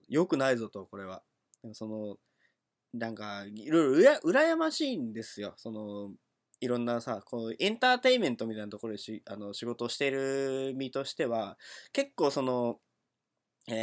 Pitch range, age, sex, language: 110-165 Hz, 20-39, male, Japanese